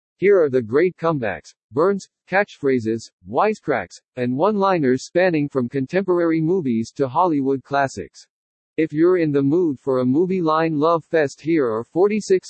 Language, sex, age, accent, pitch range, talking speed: English, male, 50-69, American, 135-180 Hz, 150 wpm